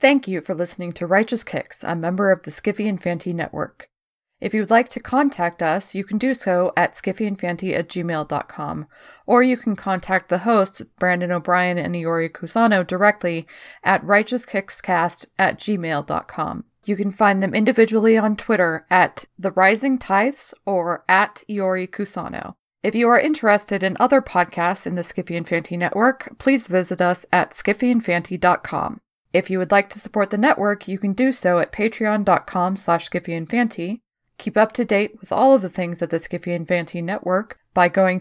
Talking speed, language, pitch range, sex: 175 wpm, English, 175-215 Hz, female